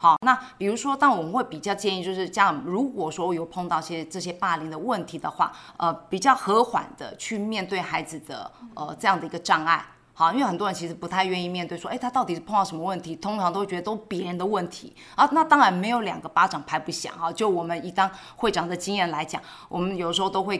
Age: 20-39